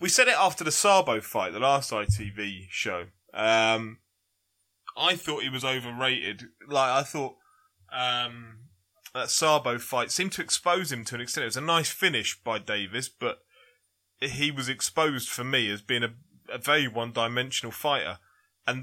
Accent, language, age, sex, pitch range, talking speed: British, English, 20-39, male, 115-150 Hz, 165 wpm